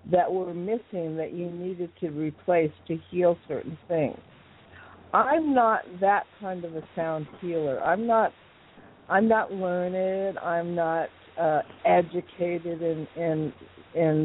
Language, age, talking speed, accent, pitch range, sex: English, 60-79, 135 wpm, American, 150-185 Hz, female